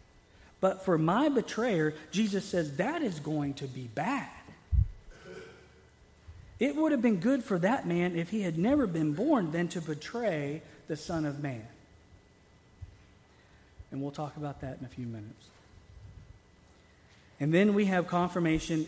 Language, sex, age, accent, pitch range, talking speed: English, male, 40-59, American, 125-170 Hz, 150 wpm